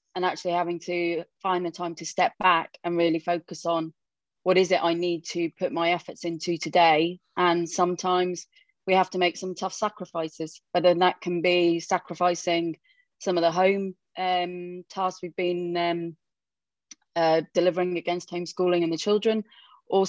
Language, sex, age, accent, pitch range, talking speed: English, female, 30-49, British, 170-185 Hz, 170 wpm